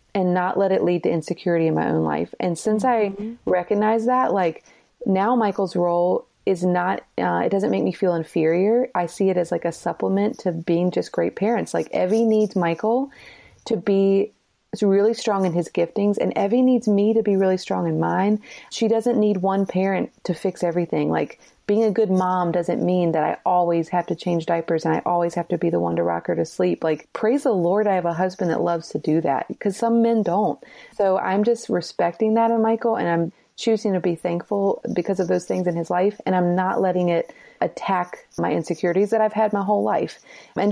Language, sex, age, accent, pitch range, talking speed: English, female, 30-49, American, 175-215 Hz, 220 wpm